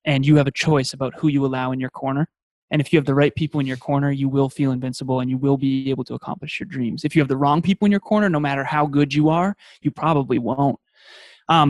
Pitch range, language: 135-155 Hz, English